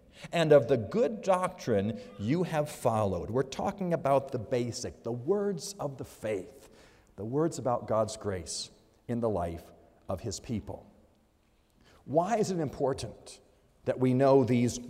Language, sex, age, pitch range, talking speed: English, male, 50-69, 130-210 Hz, 150 wpm